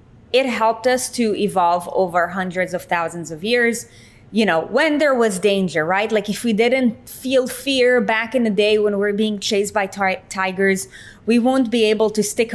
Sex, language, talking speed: female, English, 200 wpm